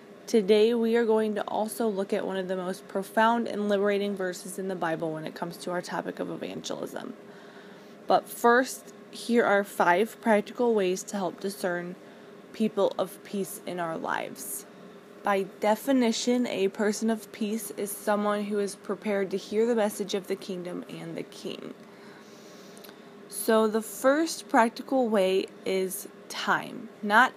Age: 20-39